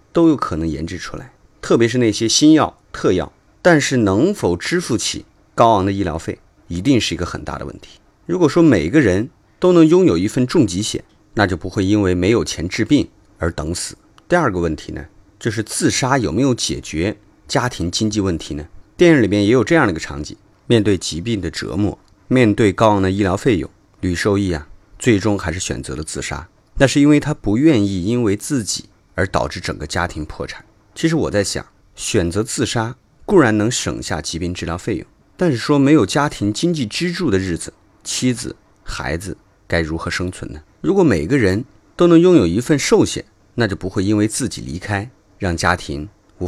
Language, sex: Chinese, male